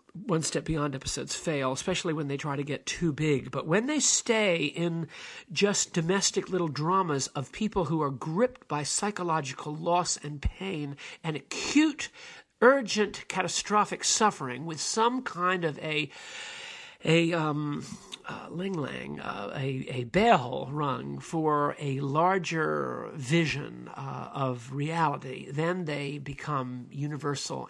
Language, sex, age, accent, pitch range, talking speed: English, male, 50-69, American, 145-185 Hz, 135 wpm